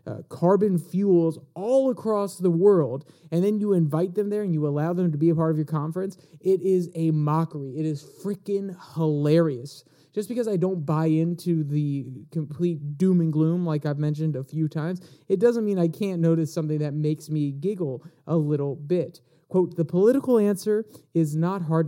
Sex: male